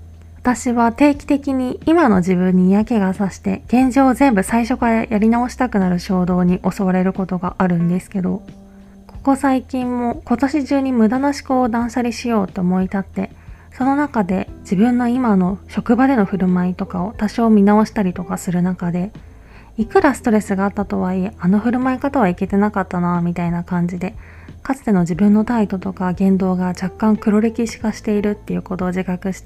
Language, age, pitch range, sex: Japanese, 20-39, 180-225 Hz, female